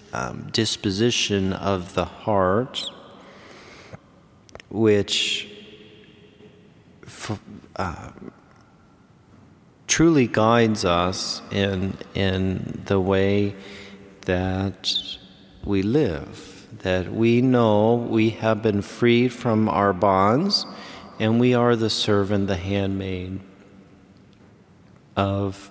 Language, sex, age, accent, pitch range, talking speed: English, male, 40-59, American, 100-130 Hz, 80 wpm